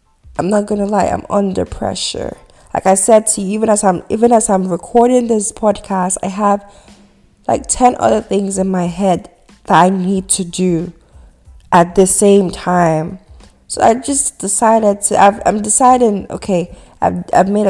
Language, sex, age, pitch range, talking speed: English, female, 20-39, 175-205 Hz, 175 wpm